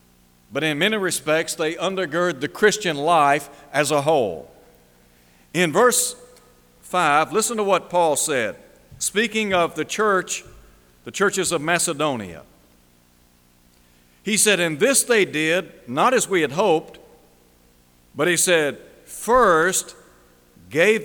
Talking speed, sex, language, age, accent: 125 wpm, male, English, 60-79, American